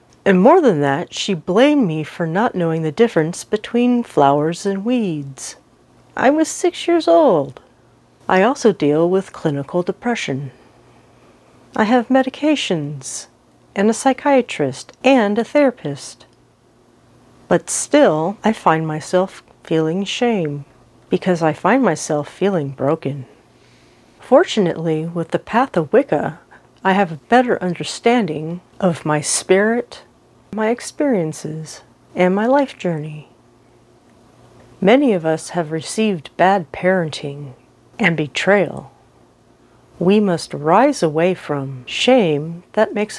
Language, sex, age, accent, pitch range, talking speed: English, female, 40-59, American, 145-225 Hz, 120 wpm